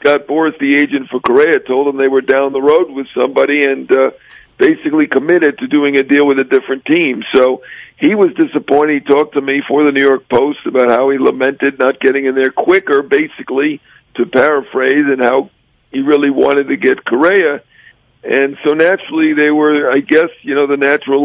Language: English